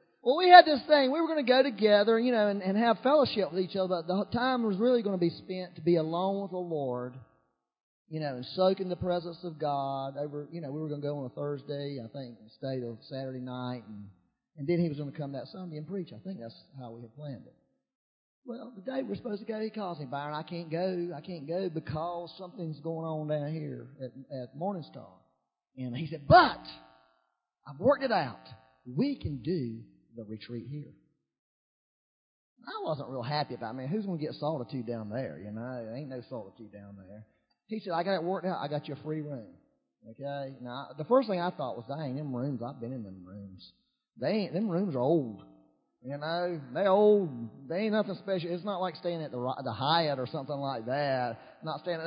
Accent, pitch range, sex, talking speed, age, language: American, 130-185 Hz, male, 230 wpm, 40-59, English